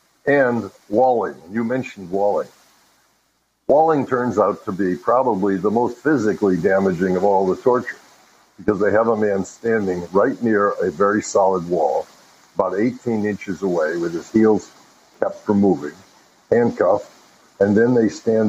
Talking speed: 150 wpm